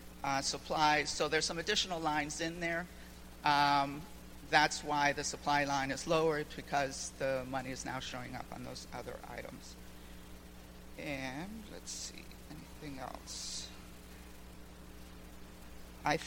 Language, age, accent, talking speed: English, 50-69, American, 125 wpm